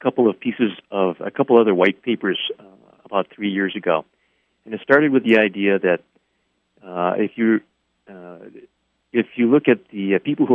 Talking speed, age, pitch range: 195 wpm, 50-69, 95-110 Hz